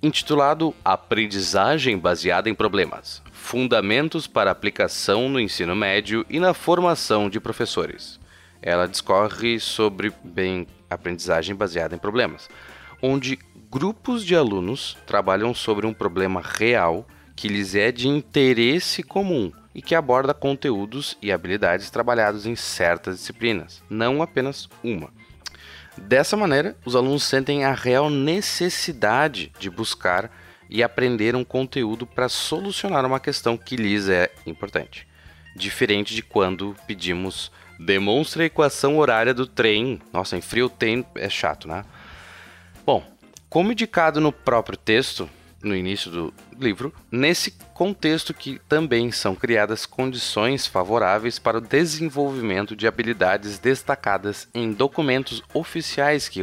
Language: Portuguese